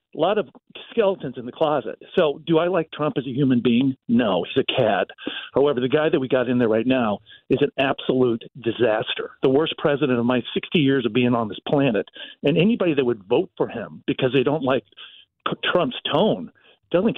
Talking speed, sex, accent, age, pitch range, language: 210 wpm, male, American, 50-69, 130-170 Hz, English